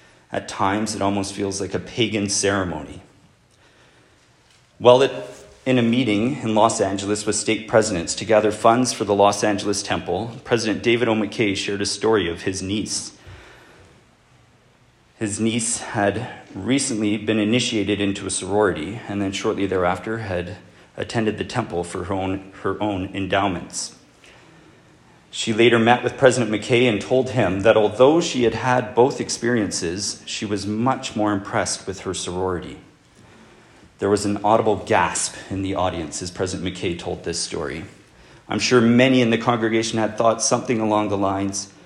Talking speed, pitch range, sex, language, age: 155 wpm, 95-115 Hz, male, English, 40-59